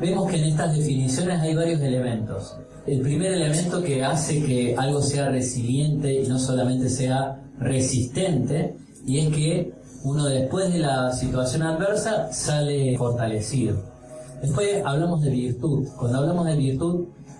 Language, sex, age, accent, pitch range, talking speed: Spanish, male, 30-49, Argentinian, 125-160 Hz, 140 wpm